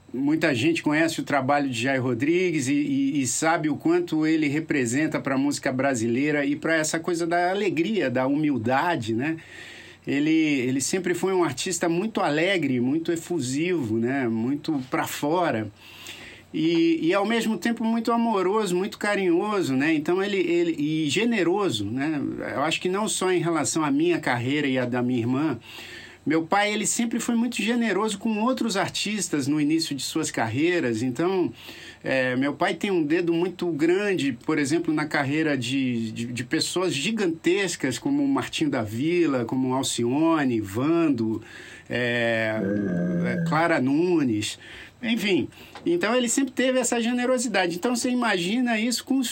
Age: 50-69